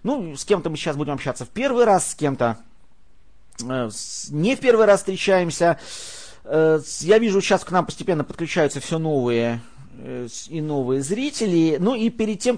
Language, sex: Russian, male